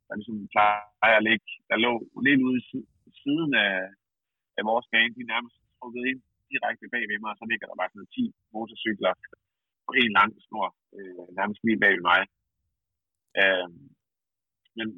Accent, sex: native, male